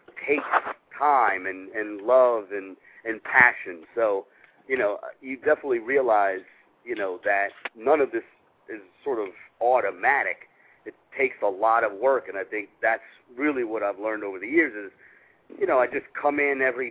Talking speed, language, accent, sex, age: 175 wpm, English, American, male, 50-69